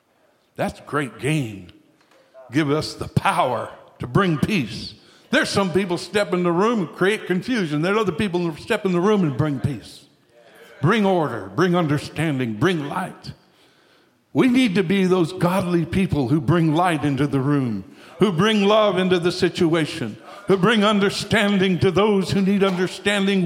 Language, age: English, 60-79